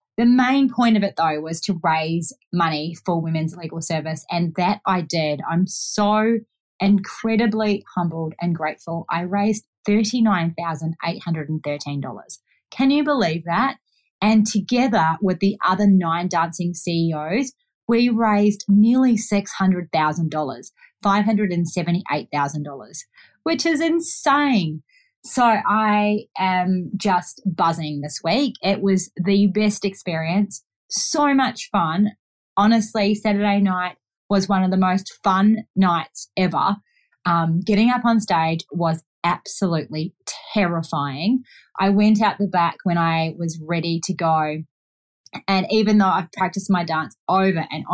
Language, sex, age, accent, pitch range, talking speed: English, female, 30-49, Australian, 165-210 Hz, 125 wpm